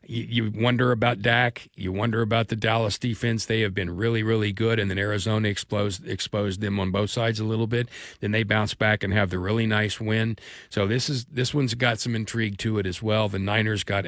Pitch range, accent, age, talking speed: 100-130 Hz, American, 40-59, 225 wpm